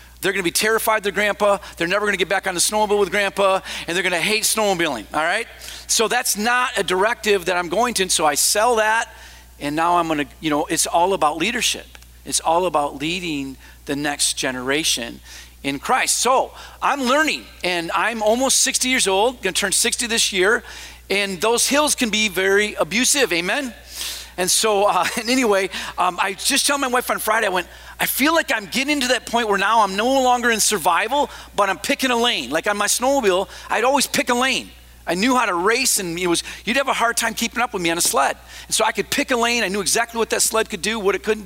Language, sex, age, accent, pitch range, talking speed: English, male, 40-59, American, 185-240 Hz, 230 wpm